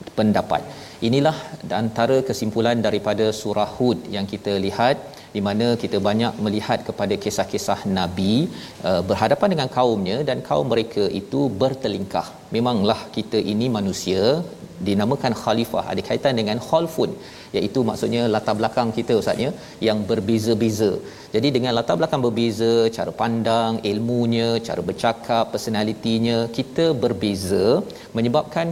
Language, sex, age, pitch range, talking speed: Malayalam, male, 40-59, 110-130 Hz, 120 wpm